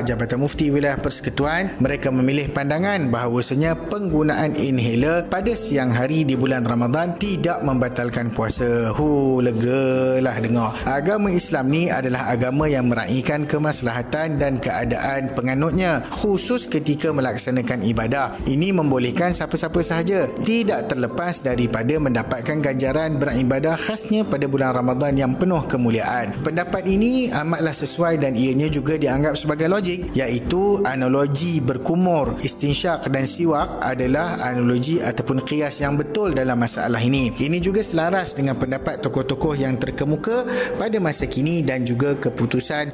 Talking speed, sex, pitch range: 130 wpm, male, 125-165 Hz